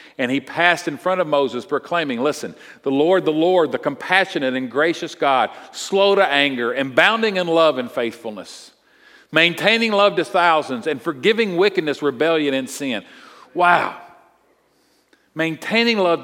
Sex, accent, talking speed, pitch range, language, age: male, American, 150 wpm, 130-205 Hz, English, 50-69